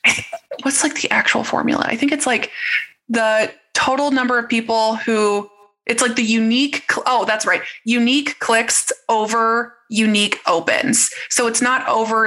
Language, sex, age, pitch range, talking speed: English, female, 20-39, 205-245 Hz, 150 wpm